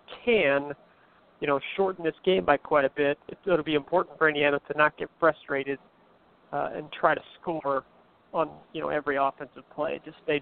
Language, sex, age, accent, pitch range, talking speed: English, male, 40-59, American, 135-165 Hz, 190 wpm